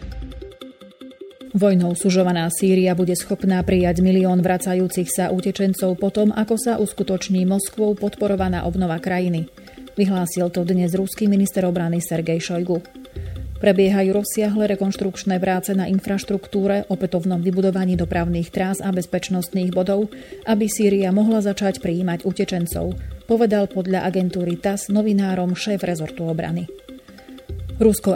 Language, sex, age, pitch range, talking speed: Slovak, female, 30-49, 180-200 Hz, 115 wpm